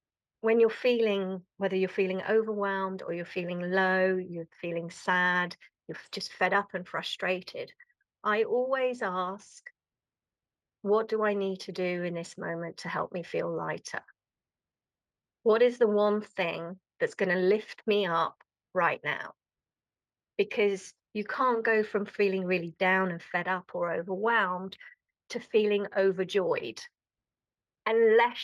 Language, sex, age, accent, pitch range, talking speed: English, female, 30-49, British, 185-225 Hz, 140 wpm